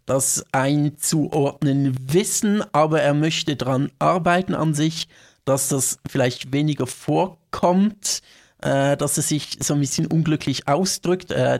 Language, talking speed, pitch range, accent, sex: German, 130 wpm, 130-180 Hz, German, male